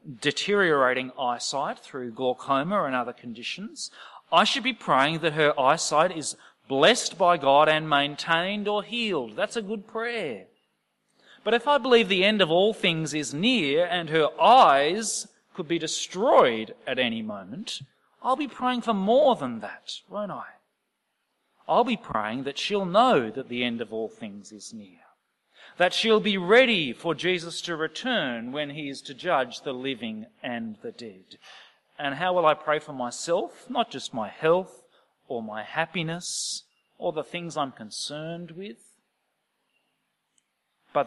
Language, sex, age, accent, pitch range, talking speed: English, male, 30-49, Australian, 135-210 Hz, 160 wpm